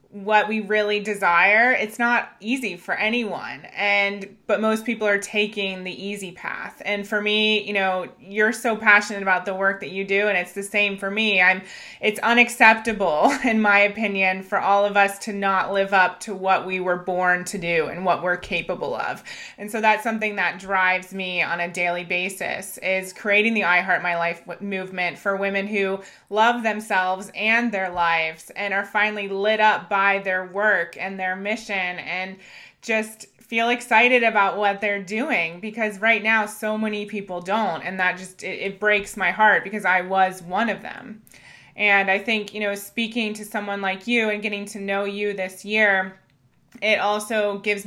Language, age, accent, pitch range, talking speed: English, 20-39, American, 190-215 Hz, 190 wpm